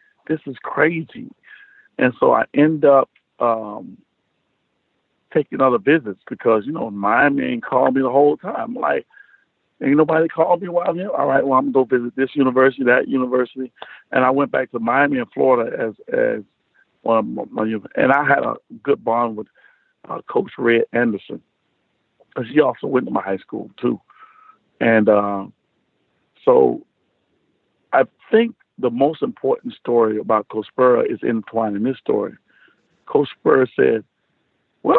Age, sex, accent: 50-69, male, American